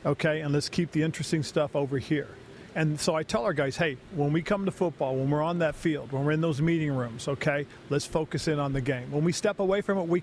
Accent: American